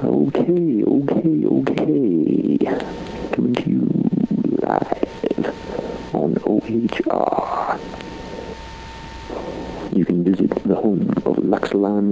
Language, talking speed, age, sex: English, 80 wpm, 60-79, male